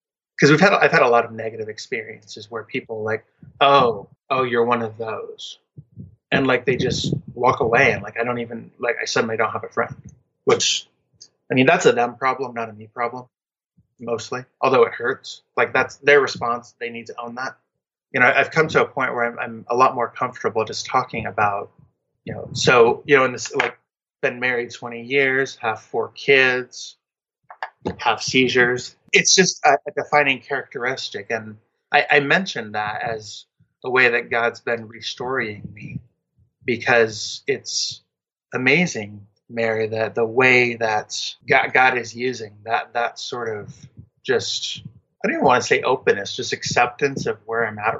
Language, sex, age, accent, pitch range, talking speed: English, male, 20-39, American, 110-130 Hz, 180 wpm